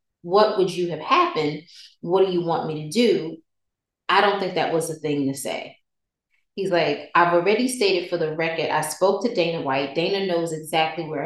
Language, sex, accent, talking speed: English, female, American, 205 wpm